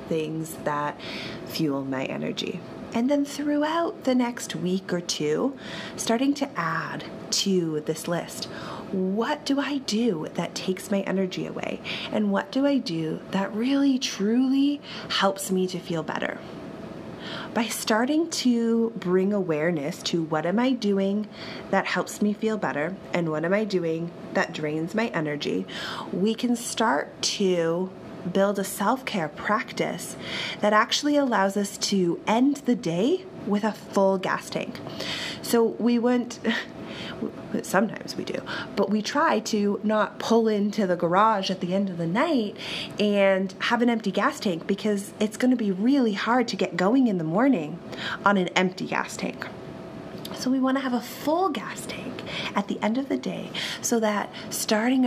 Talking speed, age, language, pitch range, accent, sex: 160 wpm, 30-49, English, 185-240 Hz, American, female